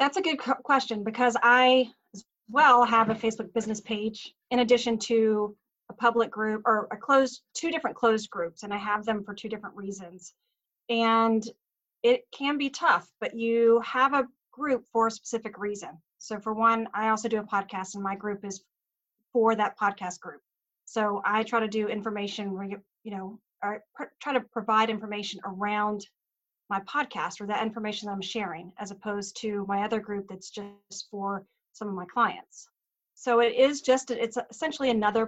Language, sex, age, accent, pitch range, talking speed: English, female, 30-49, American, 205-245 Hz, 180 wpm